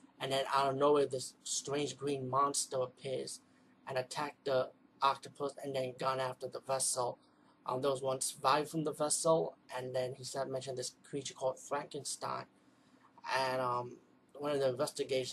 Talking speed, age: 165 wpm, 20-39